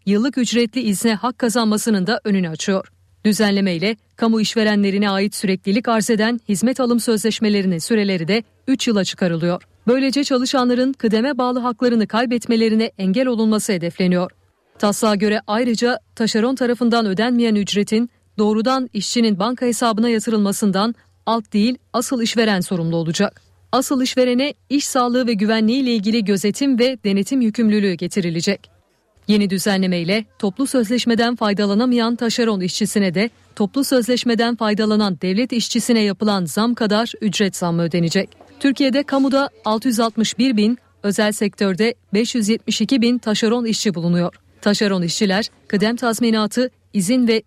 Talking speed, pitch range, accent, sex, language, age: 125 wpm, 205-240 Hz, native, female, Turkish, 40-59